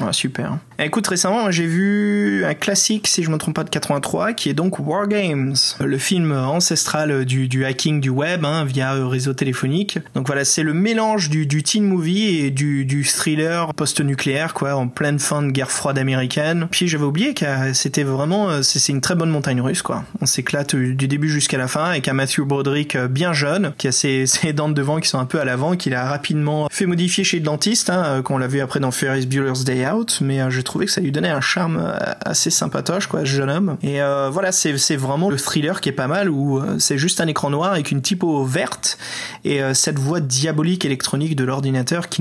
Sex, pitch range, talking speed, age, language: male, 135-170 Hz, 225 wpm, 20-39, French